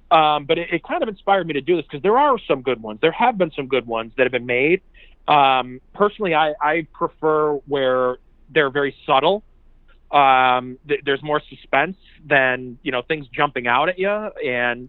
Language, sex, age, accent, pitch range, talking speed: English, male, 30-49, American, 135-180 Hz, 200 wpm